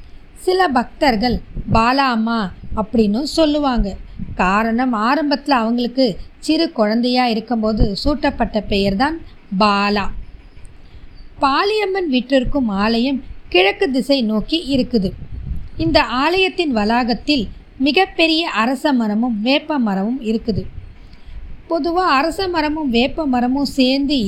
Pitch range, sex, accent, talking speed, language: 230-295 Hz, female, native, 85 wpm, Tamil